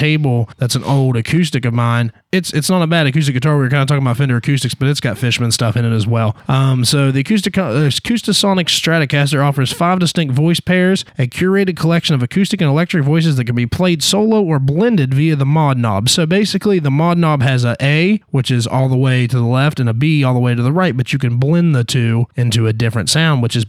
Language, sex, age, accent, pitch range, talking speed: English, male, 20-39, American, 125-165 Hz, 250 wpm